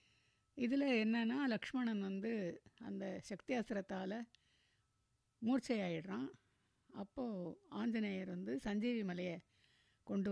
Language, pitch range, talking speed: Tamil, 185-235 Hz, 75 wpm